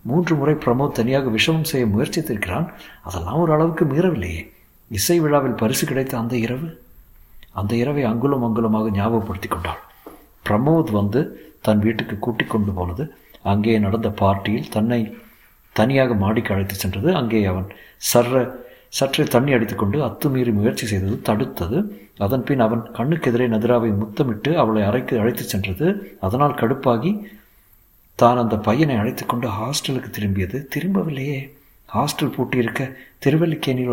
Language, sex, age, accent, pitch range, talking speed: Tamil, male, 50-69, native, 105-145 Hz, 125 wpm